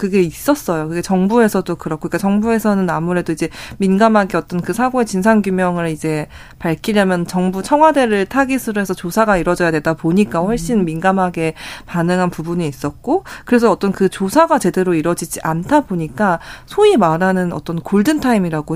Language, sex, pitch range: Korean, female, 175-235 Hz